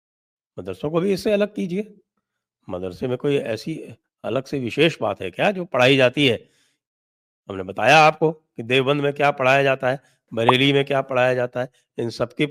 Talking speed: 180 wpm